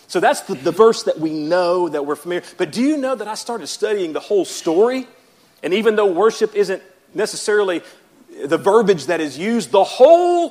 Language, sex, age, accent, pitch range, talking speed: English, male, 40-59, American, 145-210 Hz, 200 wpm